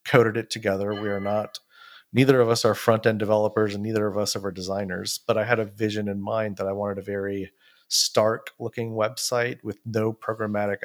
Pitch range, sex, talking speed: 105-115 Hz, male, 205 wpm